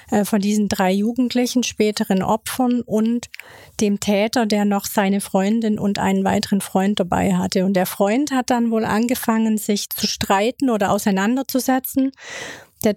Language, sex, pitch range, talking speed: German, female, 205-240 Hz, 150 wpm